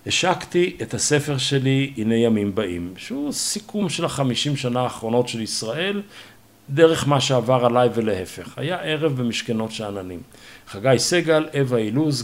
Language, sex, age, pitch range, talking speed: Hebrew, male, 50-69, 115-175 Hz, 135 wpm